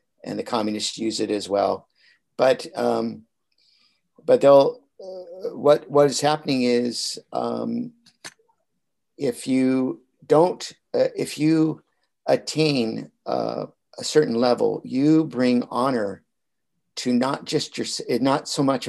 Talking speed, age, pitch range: 125 wpm, 50-69, 115-150 Hz